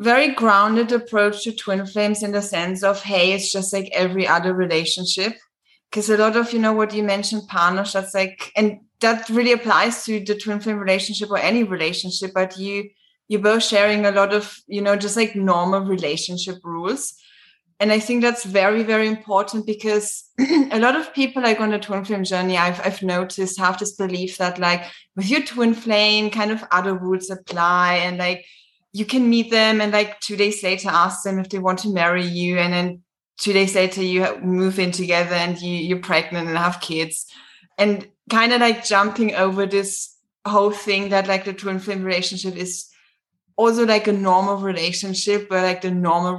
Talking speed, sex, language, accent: 195 wpm, female, English, German